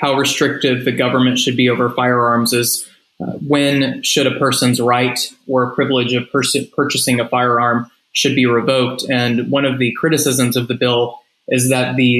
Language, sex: English, male